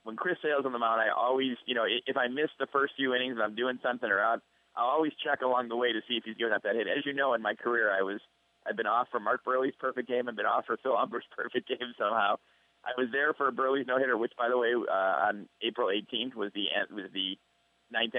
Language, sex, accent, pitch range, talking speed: English, male, American, 115-140 Hz, 270 wpm